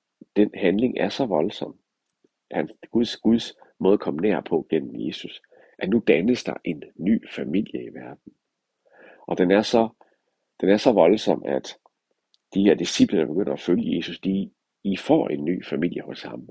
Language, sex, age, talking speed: Danish, male, 60-79, 175 wpm